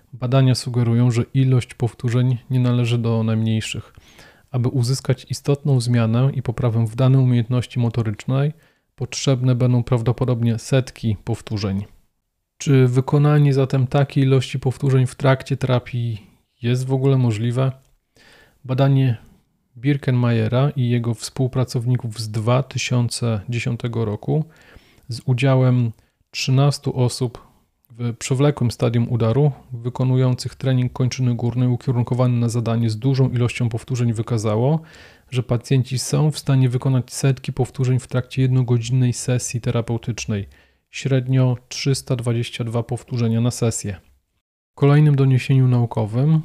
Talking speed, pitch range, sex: 110 wpm, 120-130 Hz, male